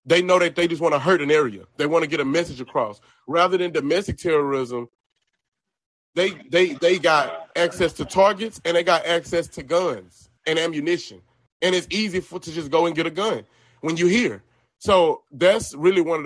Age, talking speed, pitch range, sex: 30-49, 205 wpm, 140-200 Hz, male